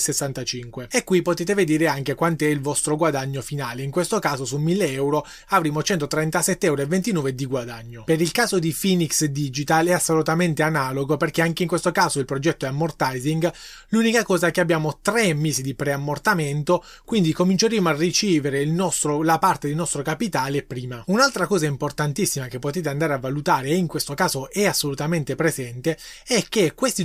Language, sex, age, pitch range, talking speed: Italian, male, 20-39, 145-185 Hz, 175 wpm